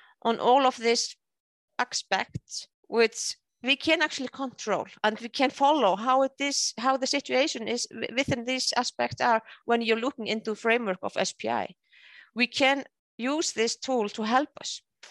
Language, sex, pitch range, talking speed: English, female, 205-255 Hz, 160 wpm